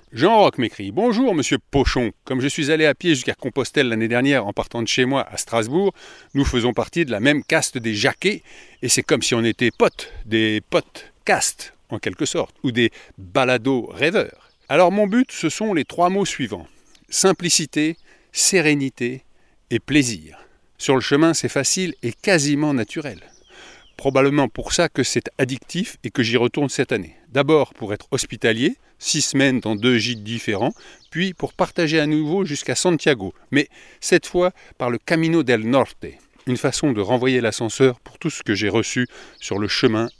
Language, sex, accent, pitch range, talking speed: French, male, French, 115-155 Hz, 180 wpm